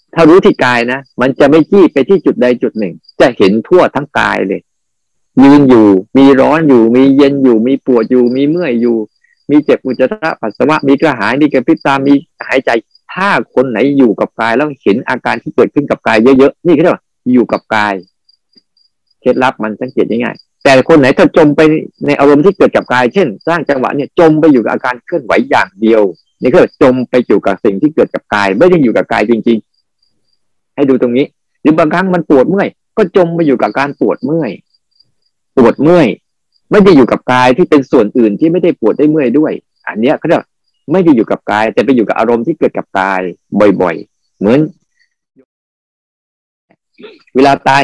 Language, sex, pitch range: Thai, male, 125-160 Hz